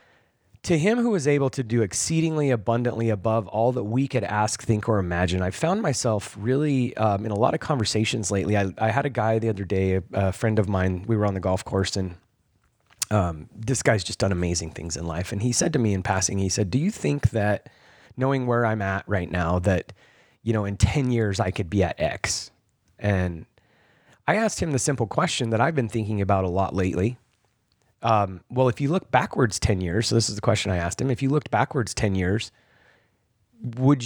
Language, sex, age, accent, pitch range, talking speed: English, male, 30-49, American, 100-125 Hz, 220 wpm